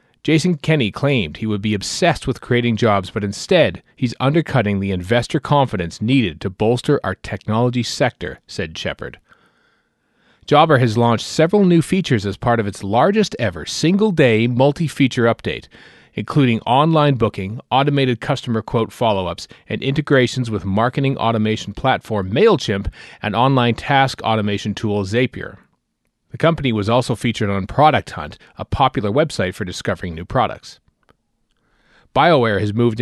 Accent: American